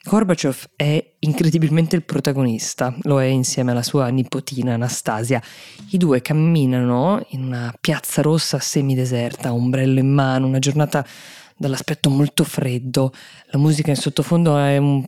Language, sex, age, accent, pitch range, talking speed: Italian, female, 20-39, native, 130-155 Hz, 135 wpm